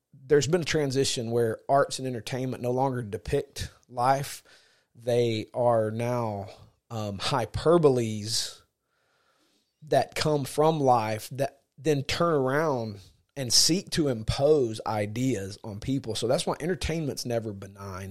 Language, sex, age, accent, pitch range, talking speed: English, male, 30-49, American, 110-135 Hz, 125 wpm